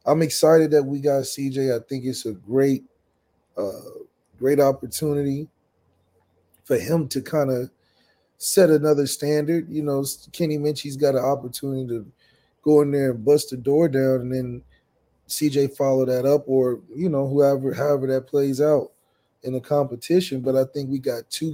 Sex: male